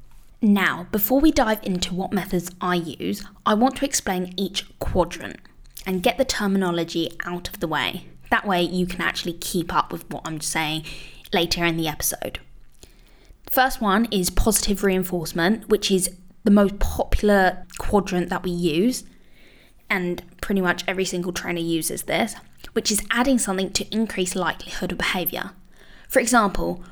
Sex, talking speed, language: female, 160 wpm, English